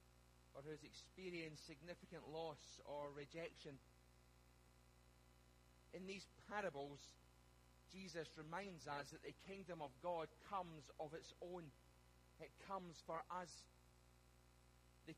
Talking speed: 105 wpm